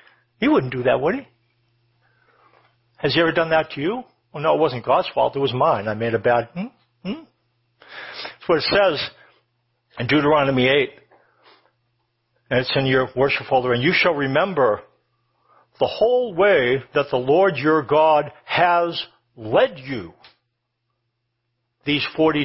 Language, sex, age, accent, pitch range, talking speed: English, male, 60-79, American, 120-165 Hz, 160 wpm